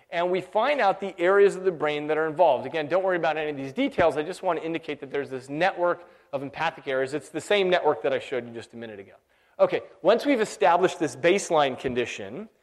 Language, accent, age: English, American, 30-49